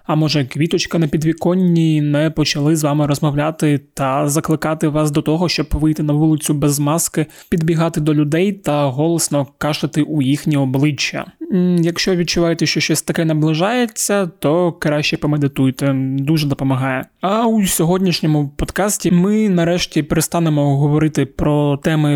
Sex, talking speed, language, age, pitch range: male, 140 wpm, Ukrainian, 20-39, 150-175 Hz